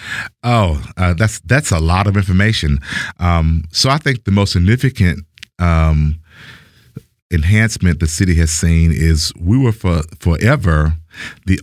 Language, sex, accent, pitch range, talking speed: English, male, American, 85-100 Hz, 140 wpm